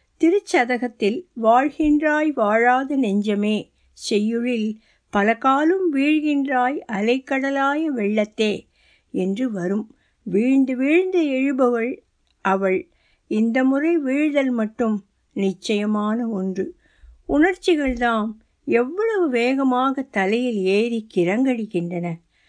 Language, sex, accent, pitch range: Tamil, female, native, 215-280 Hz